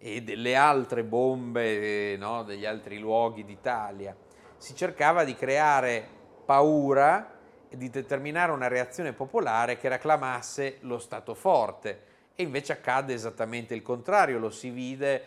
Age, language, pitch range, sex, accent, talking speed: 30-49, Italian, 105-125 Hz, male, native, 130 wpm